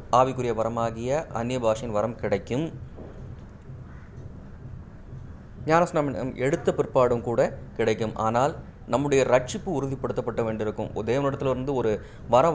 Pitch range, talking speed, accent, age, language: 120-150 Hz, 70 wpm, native, 20-39, Tamil